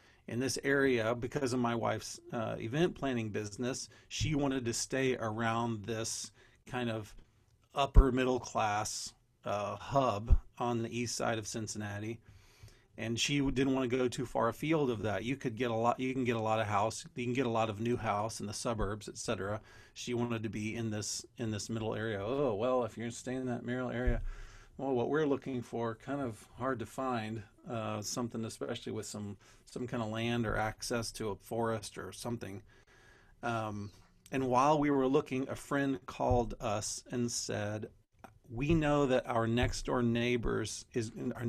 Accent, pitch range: American, 110-130 Hz